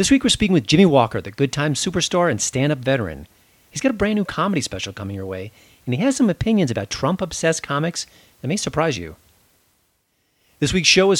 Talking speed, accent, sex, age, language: 215 wpm, American, male, 40-59, English